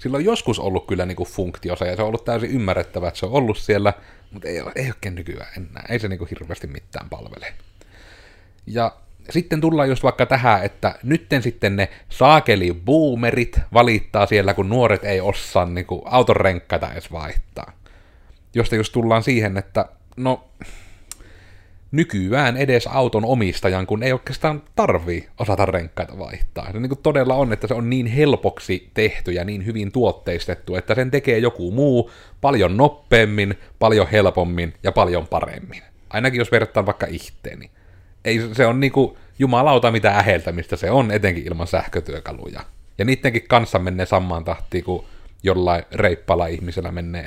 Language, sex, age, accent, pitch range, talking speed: Finnish, male, 30-49, native, 90-120 Hz, 155 wpm